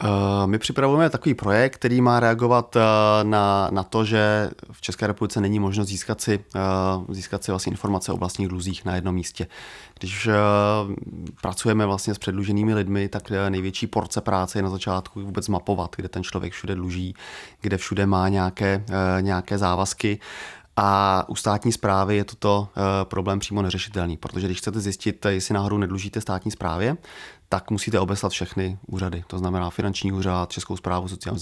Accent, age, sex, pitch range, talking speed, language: native, 30-49, male, 95-105 Hz, 155 wpm, Czech